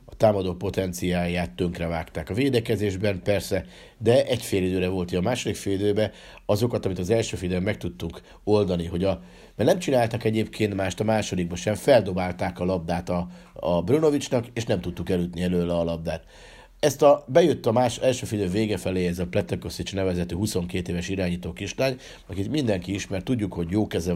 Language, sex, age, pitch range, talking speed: Hungarian, male, 50-69, 90-110 Hz, 175 wpm